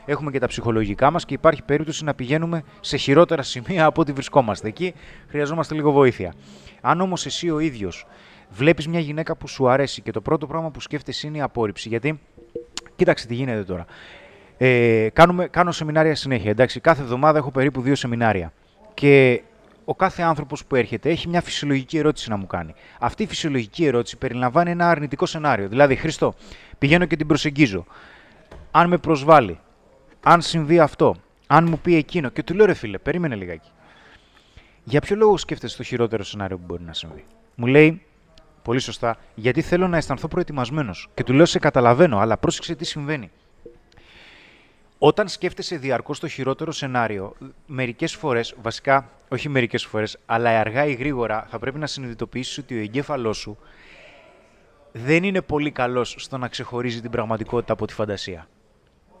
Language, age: Greek, 30-49